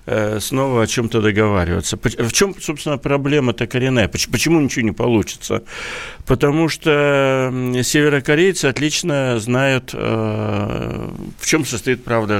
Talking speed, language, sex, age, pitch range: 105 wpm, Russian, male, 60-79, 115-145 Hz